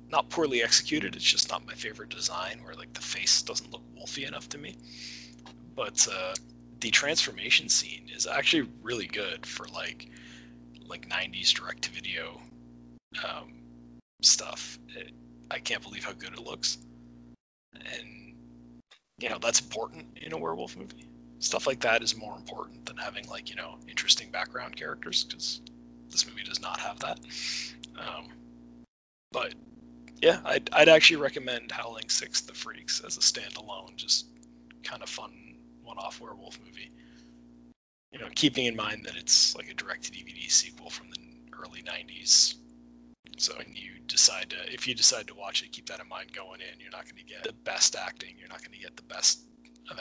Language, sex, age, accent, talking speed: English, male, 30-49, American, 170 wpm